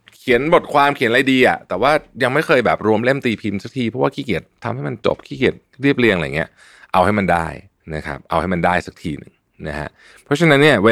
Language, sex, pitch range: Thai, male, 80-110 Hz